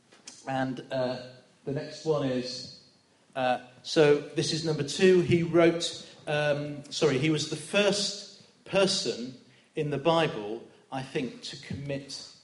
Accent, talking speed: British, 135 wpm